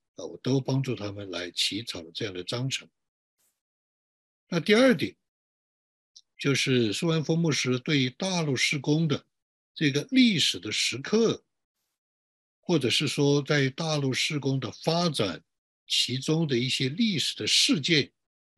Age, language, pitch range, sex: 60-79, Chinese, 110-140 Hz, male